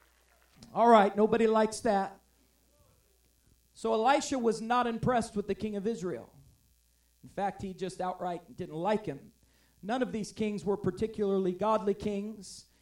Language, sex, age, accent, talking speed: English, male, 40-59, American, 145 wpm